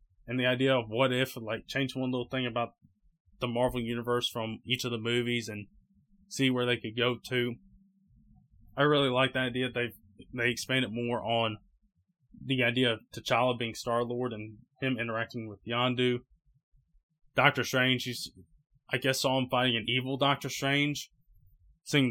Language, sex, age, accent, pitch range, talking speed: English, male, 20-39, American, 115-135 Hz, 165 wpm